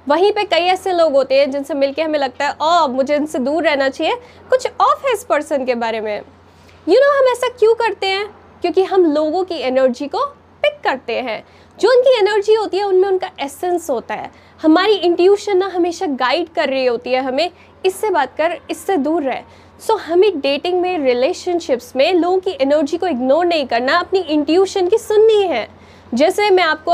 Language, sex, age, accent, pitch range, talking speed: Hindi, female, 10-29, native, 280-400 Hz, 200 wpm